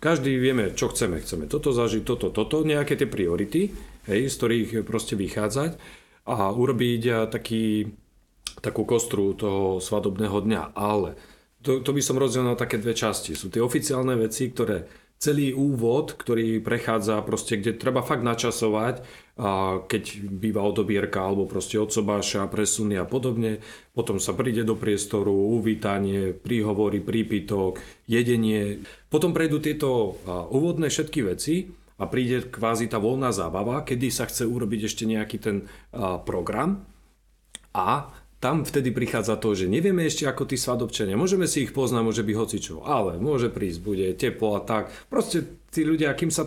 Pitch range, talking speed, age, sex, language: 105-130 Hz, 150 wpm, 40-59, male, Slovak